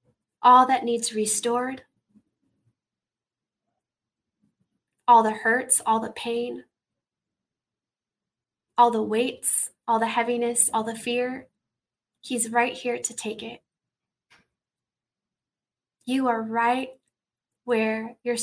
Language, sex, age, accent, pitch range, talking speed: English, female, 20-39, American, 225-245 Hz, 100 wpm